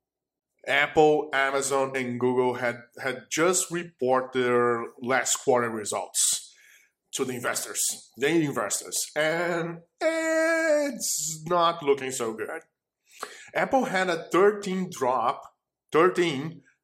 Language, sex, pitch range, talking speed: Portuguese, male, 135-225 Hz, 105 wpm